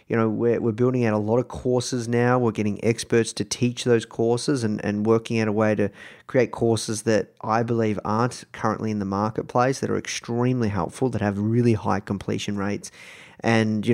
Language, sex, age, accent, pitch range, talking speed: English, male, 30-49, Australian, 110-125 Hz, 200 wpm